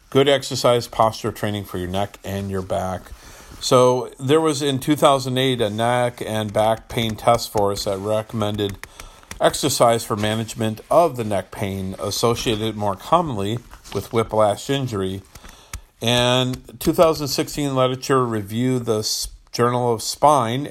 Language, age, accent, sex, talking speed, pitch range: English, 50-69, American, male, 135 wpm, 105-125 Hz